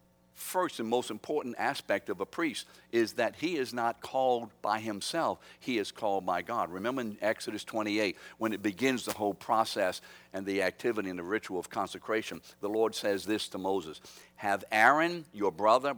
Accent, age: American, 60-79